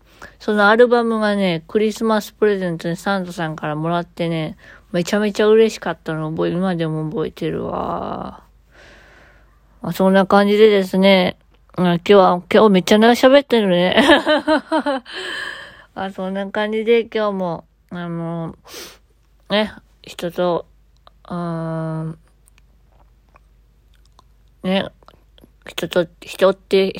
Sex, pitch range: female, 170-215 Hz